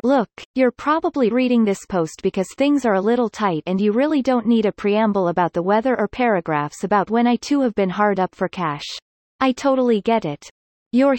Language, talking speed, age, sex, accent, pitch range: English, 210 wpm, 30-49, female, American, 190-245 Hz